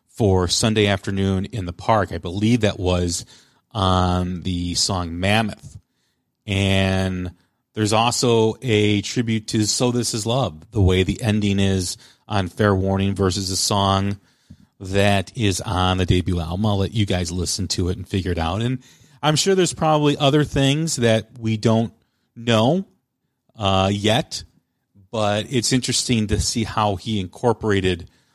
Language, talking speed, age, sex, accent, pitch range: English, 155 wpm, 40-59, male, American, 90-110 Hz